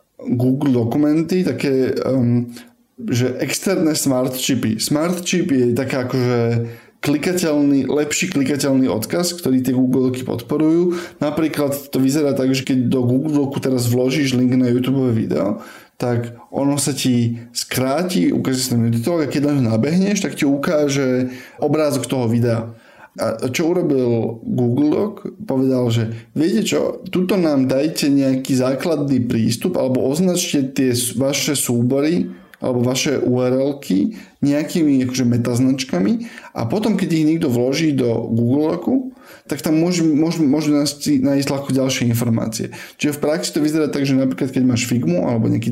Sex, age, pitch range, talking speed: male, 20-39, 125-155 Hz, 145 wpm